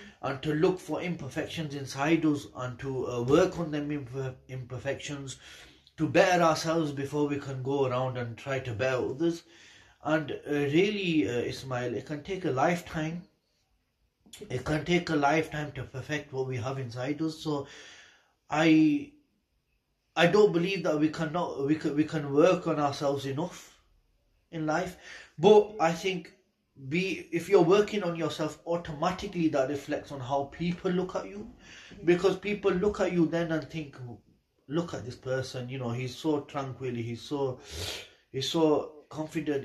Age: 30-49